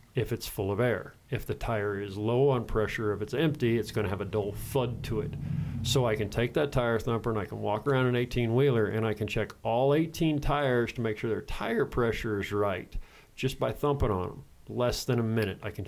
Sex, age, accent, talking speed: male, 40-59, American, 240 wpm